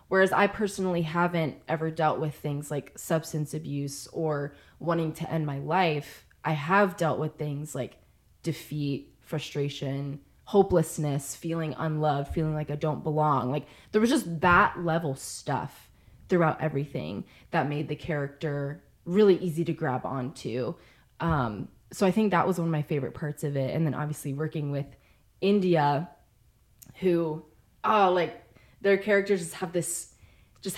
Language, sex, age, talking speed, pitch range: English, female, 20-39, 150 wpm, 145-175 Hz